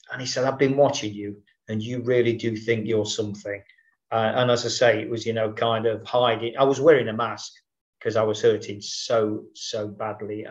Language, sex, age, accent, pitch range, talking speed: English, male, 50-69, British, 110-160 Hz, 215 wpm